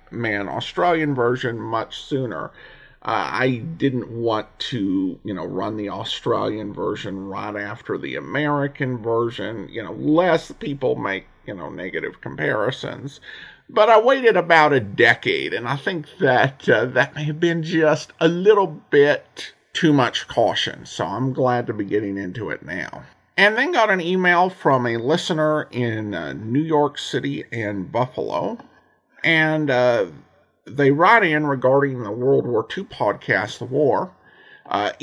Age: 50-69